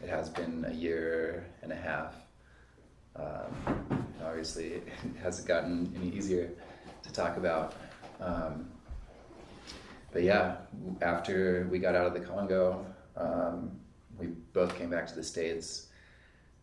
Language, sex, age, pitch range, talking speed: English, male, 30-49, 80-85 Hz, 135 wpm